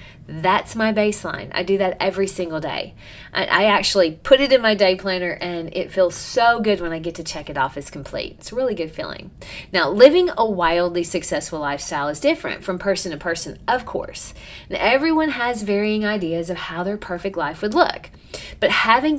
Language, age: English, 30-49